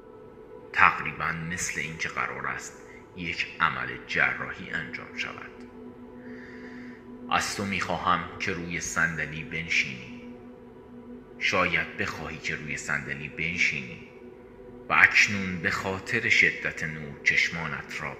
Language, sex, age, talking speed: Persian, male, 30-49, 100 wpm